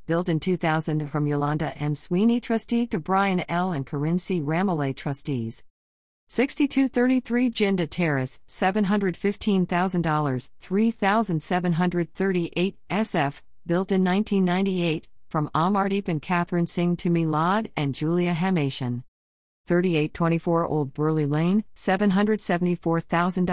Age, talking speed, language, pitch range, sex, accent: 50-69, 90 wpm, English, 155-195 Hz, female, American